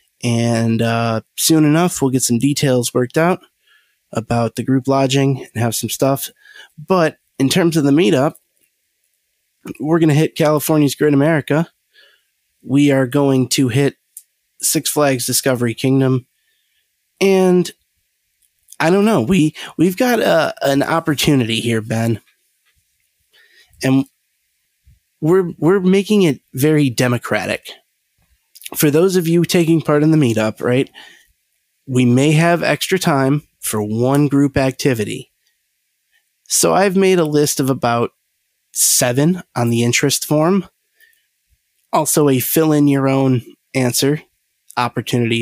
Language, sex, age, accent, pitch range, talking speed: English, male, 30-49, American, 125-165 Hz, 130 wpm